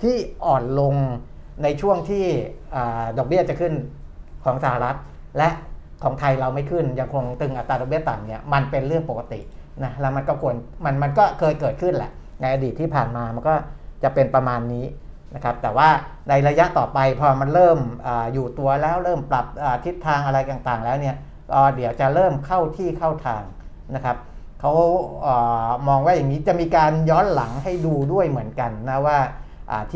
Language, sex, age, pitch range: Thai, male, 60-79, 120-155 Hz